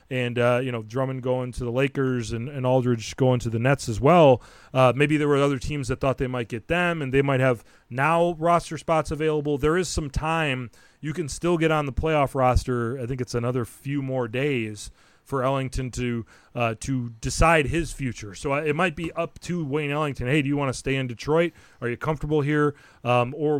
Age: 30-49